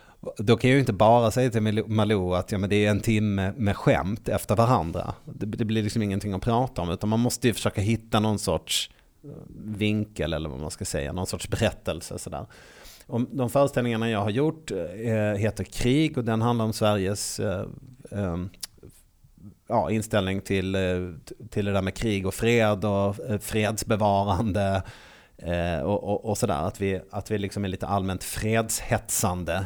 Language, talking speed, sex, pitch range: Swedish, 160 wpm, male, 95-115 Hz